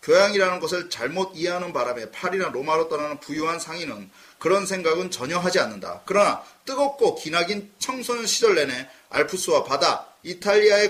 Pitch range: 180-275 Hz